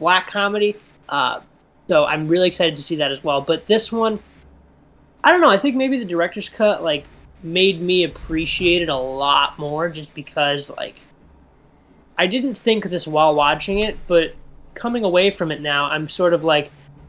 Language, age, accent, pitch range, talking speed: English, 20-39, American, 150-200 Hz, 185 wpm